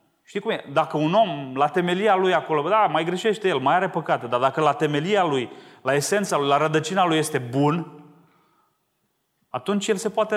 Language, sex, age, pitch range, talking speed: Romanian, male, 30-49, 115-175 Hz, 195 wpm